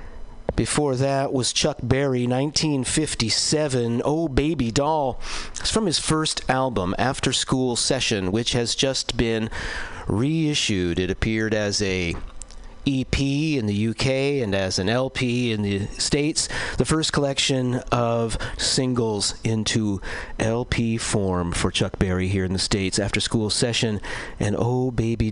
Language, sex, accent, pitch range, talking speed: English, male, American, 105-135 Hz, 135 wpm